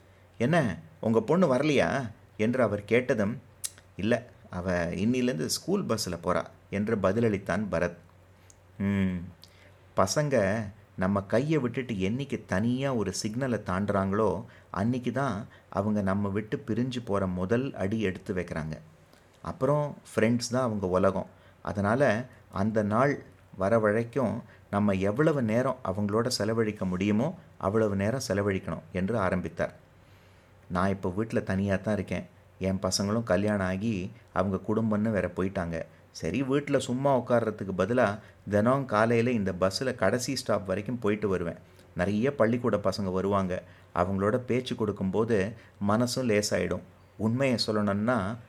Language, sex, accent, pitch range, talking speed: Tamil, male, native, 95-115 Hz, 120 wpm